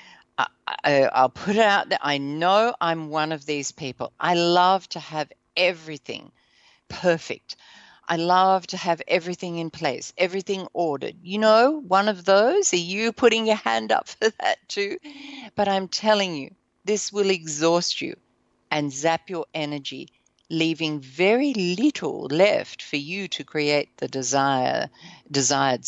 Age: 50-69